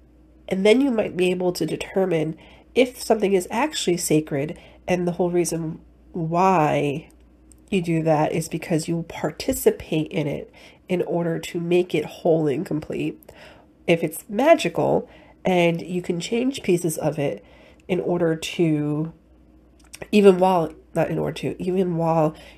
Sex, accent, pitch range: female, American, 150-185 Hz